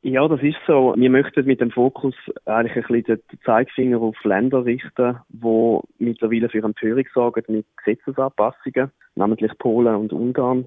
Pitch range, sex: 115-130 Hz, male